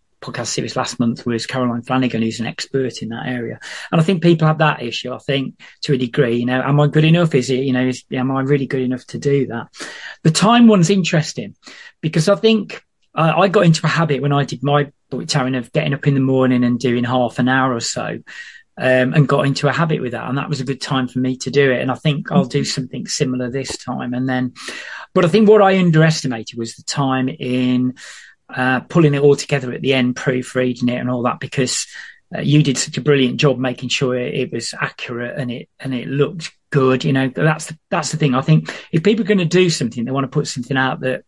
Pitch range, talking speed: 125-160 Hz, 250 wpm